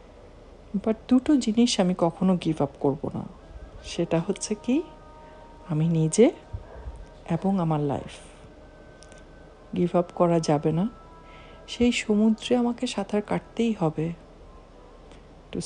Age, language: 50-69, Bengali